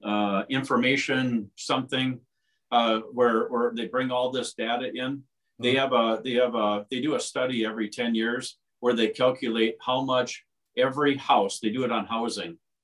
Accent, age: American, 40-59